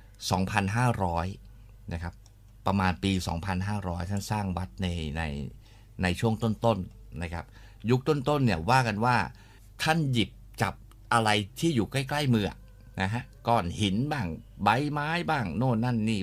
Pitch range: 95-115 Hz